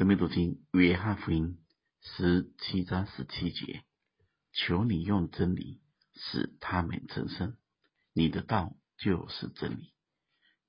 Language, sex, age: Chinese, male, 50-69